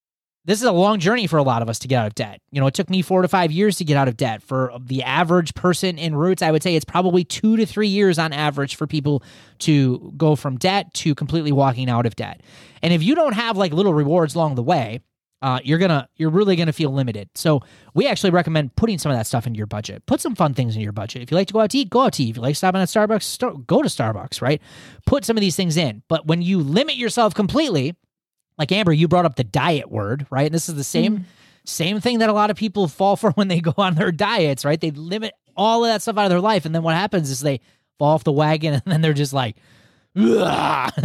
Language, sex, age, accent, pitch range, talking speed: English, male, 30-49, American, 145-210 Hz, 270 wpm